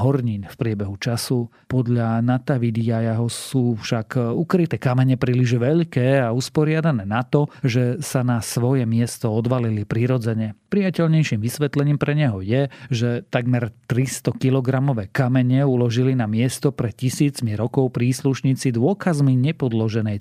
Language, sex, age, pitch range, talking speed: Slovak, male, 40-59, 115-140 Hz, 130 wpm